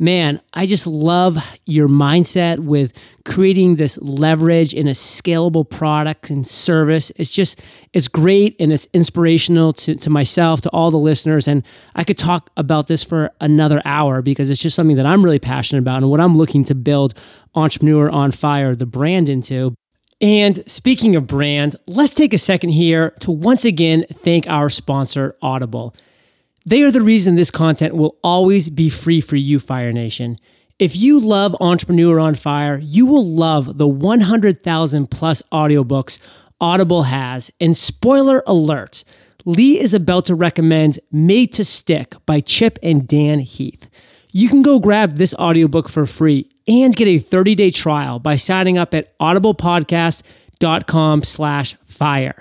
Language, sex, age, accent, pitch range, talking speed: English, male, 30-49, American, 145-180 Hz, 160 wpm